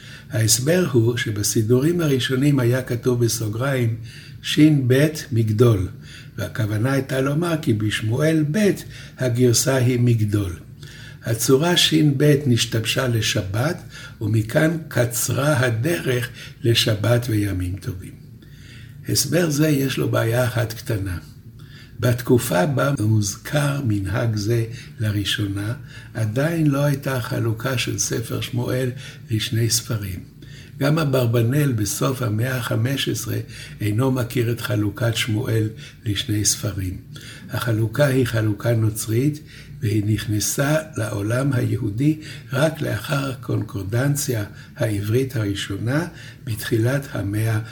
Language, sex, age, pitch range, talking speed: Hebrew, male, 60-79, 115-140 Hz, 100 wpm